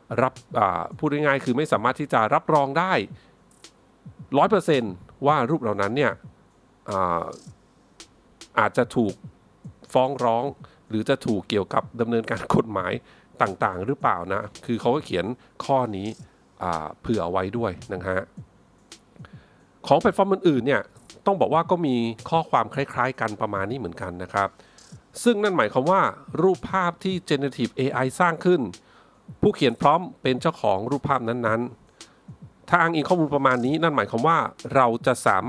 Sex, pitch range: male, 115-155 Hz